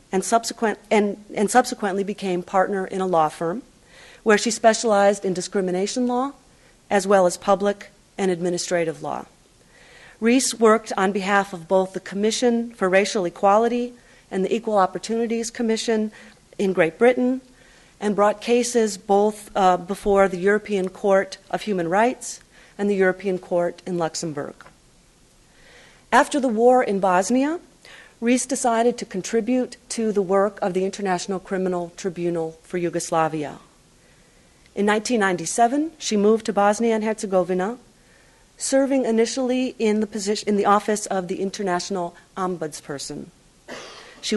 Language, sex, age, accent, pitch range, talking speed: English, female, 40-59, American, 185-235 Hz, 130 wpm